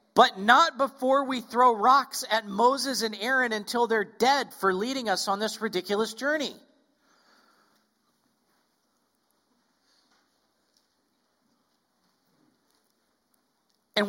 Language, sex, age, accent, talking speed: English, male, 40-59, American, 90 wpm